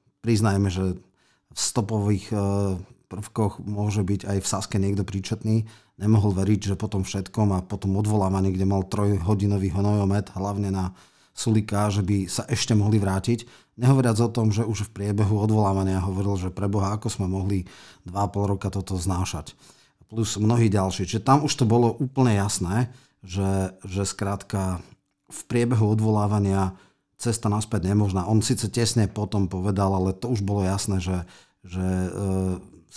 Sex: male